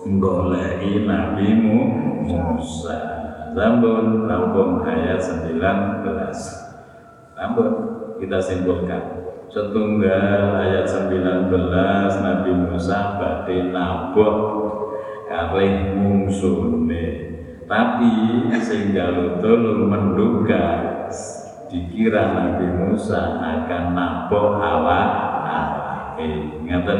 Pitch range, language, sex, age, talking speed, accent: 90-105 Hz, Indonesian, male, 50-69, 65 wpm, native